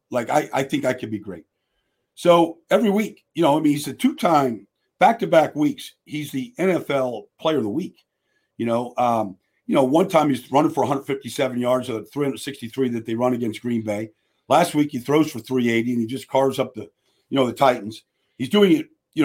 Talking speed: 220 wpm